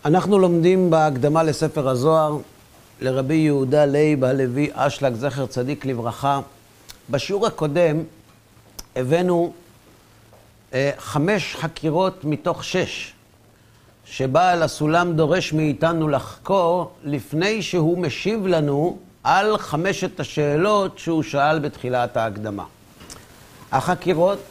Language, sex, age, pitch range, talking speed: Hebrew, male, 50-69, 135-180 Hz, 95 wpm